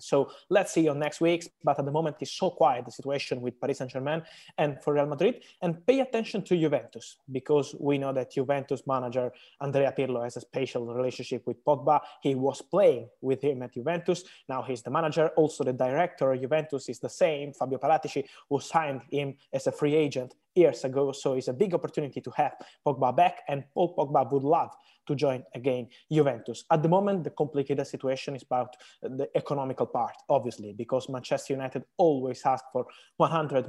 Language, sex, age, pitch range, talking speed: English, male, 20-39, 130-165 Hz, 190 wpm